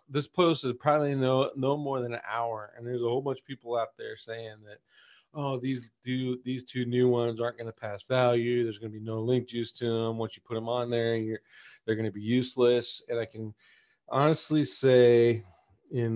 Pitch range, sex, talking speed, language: 115-130 Hz, male, 225 wpm, English